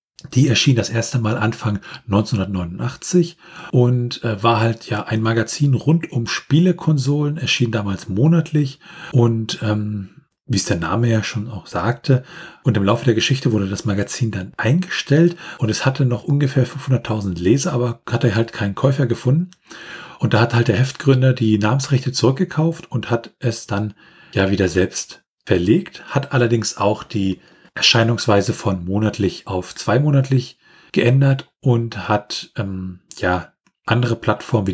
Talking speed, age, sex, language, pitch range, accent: 150 wpm, 40-59, male, German, 110-140 Hz, German